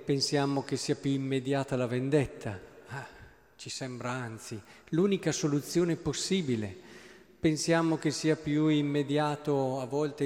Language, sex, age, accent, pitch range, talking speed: Italian, male, 40-59, native, 125-150 Hz, 115 wpm